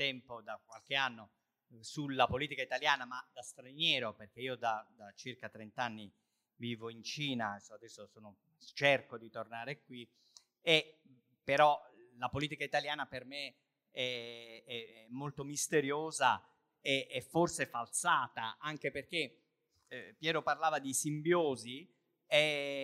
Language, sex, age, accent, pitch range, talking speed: Italian, male, 40-59, native, 120-155 Hz, 125 wpm